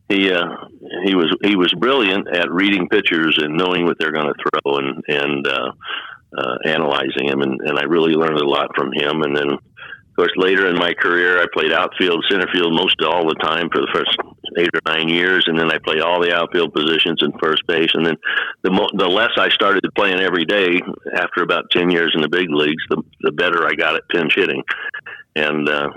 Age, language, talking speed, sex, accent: 60-79, English, 220 wpm, male, American